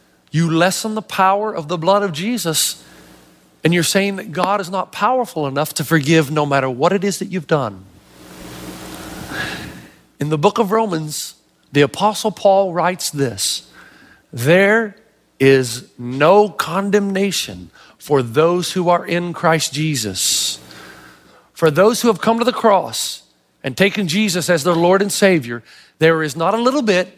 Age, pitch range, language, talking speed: 40-59, 155-230 Hz, English, 155 wpm